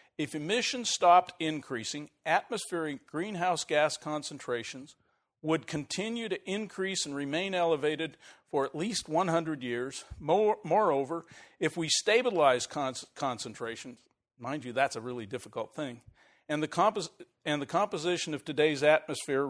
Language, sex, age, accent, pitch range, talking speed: English, male, 50-69, American, 140-175 Hz, 125 wpm